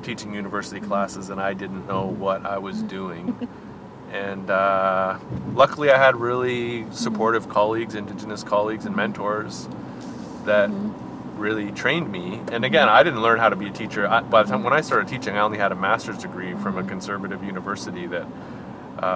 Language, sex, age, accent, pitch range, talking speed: English, male, 30-49, American, 100-135 Hz, 170 wpm